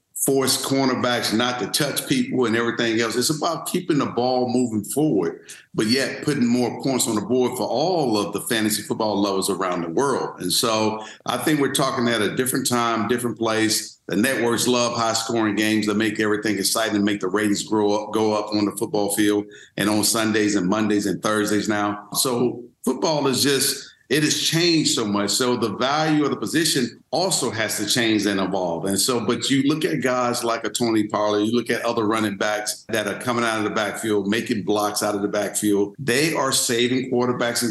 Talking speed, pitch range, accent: 210 wpm, 105-125 Hz, American